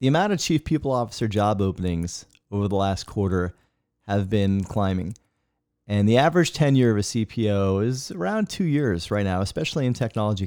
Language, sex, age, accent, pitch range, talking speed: English, male, 30-49, American, 100-125 Hz, 180 wpm